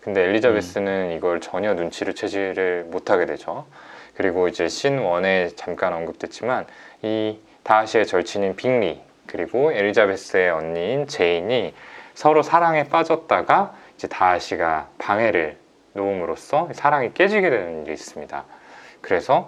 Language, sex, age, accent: Korean, male, 20-39, native